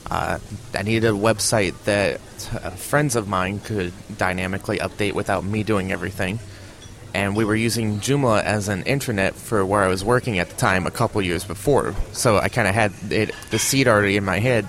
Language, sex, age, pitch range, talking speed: English, male, 20-39, 95-110 Hz, 200 wpm